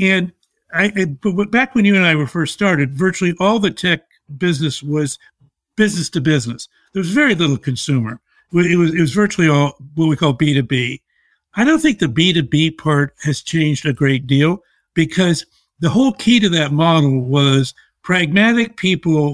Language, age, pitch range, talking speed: English, 60-79, 145-190 Hz, 165 wpm